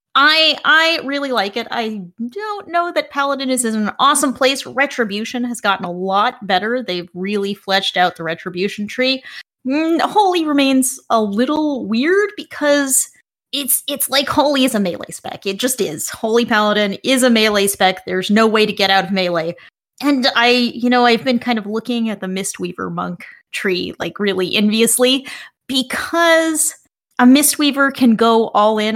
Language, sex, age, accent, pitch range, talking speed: English, female, 30-49, American, 205-275 Hz, 175 wpm